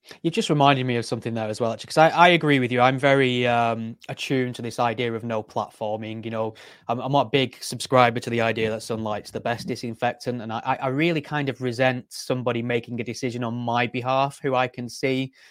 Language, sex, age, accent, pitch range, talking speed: English, male, 20-39, British, 115-130 Hz, 230 wpm